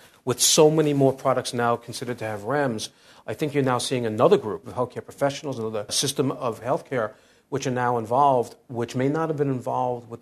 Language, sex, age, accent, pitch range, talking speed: English, male, 40-59, American, 115-135 Hz, 205 wpm